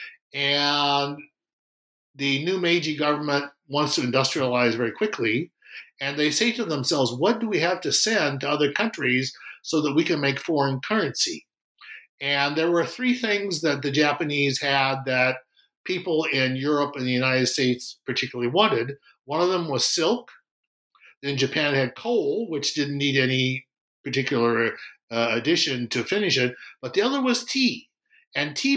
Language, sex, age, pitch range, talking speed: English, male, 60-79, 130-185 Hz, 160 wpm